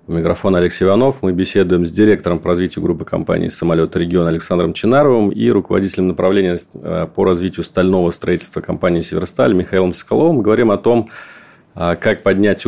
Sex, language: male, Russian